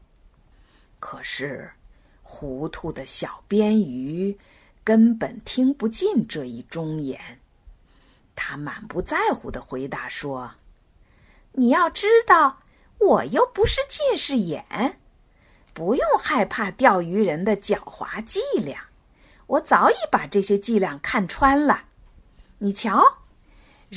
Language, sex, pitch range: Chinese, female, 155-255 Hz